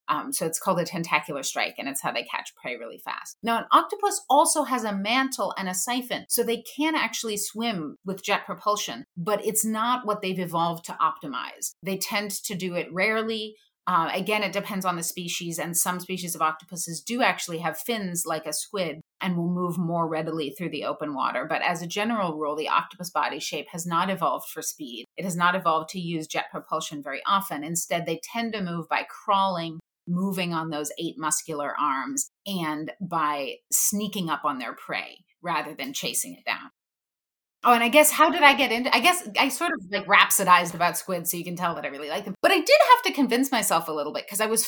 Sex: female